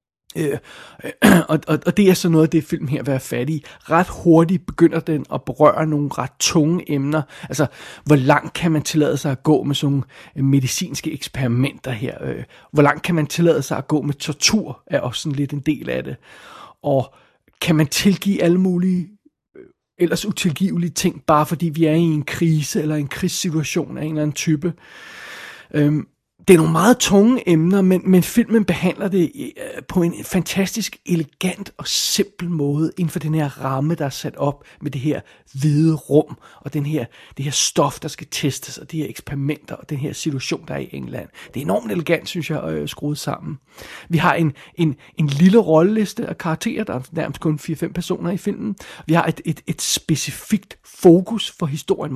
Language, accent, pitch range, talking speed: Danish, native, 145-180 Hz, 195 wpm